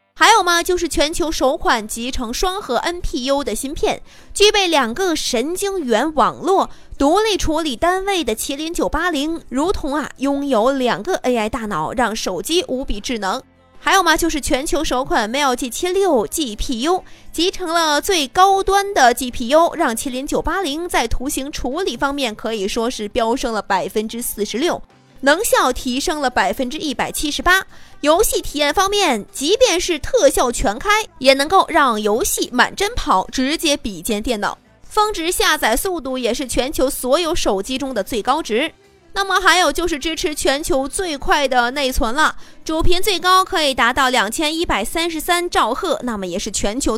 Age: 20-39